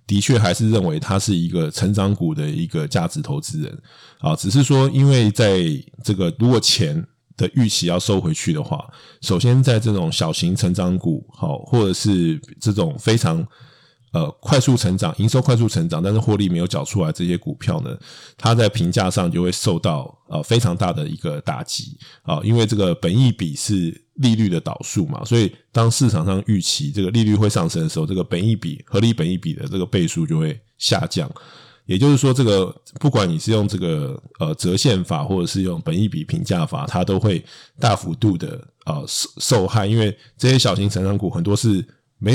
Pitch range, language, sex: 100-145 Hz, Chinese, male